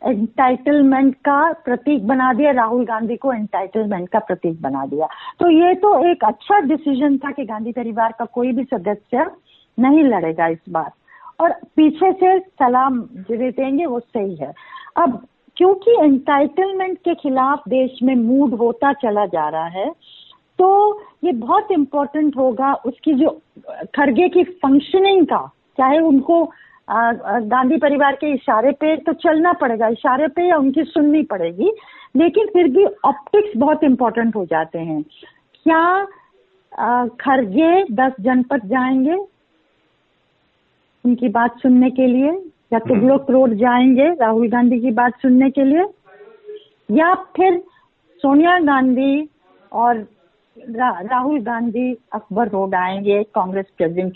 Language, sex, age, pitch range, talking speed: Hindi, female, 50-69, 230-315 Hz, 135 wpm